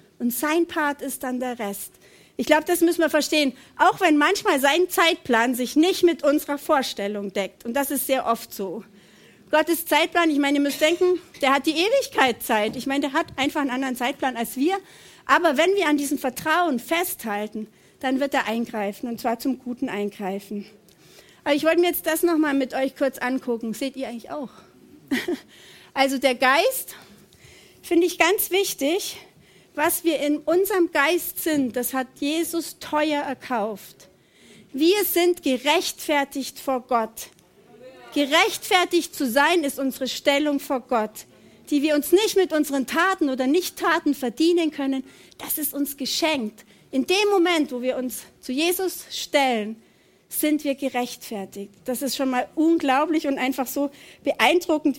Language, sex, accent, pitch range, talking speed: German, female, German, 255-330 Hz, 165 wpm